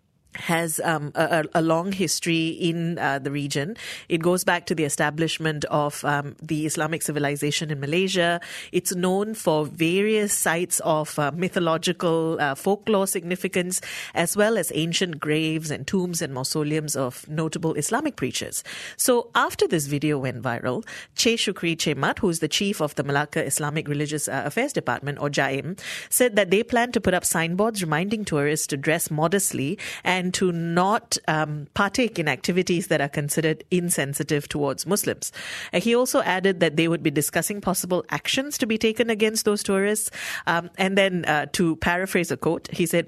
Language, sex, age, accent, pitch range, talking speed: English, female, 30-49, Indian, 150-190 Hz, 175 wpm